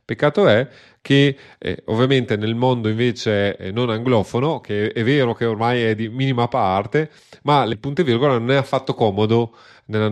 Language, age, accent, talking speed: Italian, 30-49, native, 165 wpm